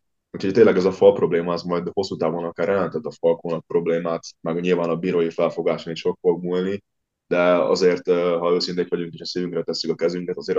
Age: 20-39